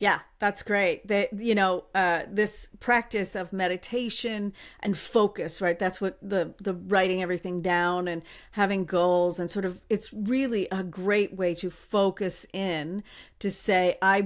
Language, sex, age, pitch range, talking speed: English, female, 40-59, 180-210 Hz, 160 wpm